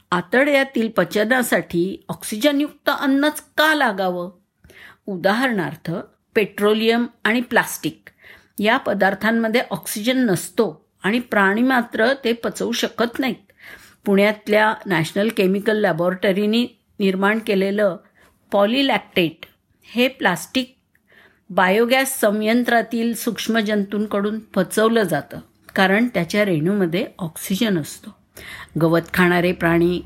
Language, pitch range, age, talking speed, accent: Marathi, 180-235 Hz, 50-69, 85 wpm, native